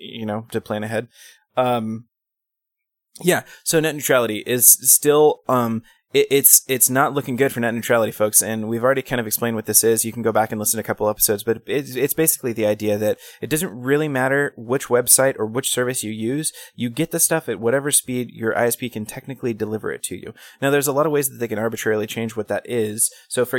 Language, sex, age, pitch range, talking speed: English, male, 20-39, 110-130 Hz, 230 wpm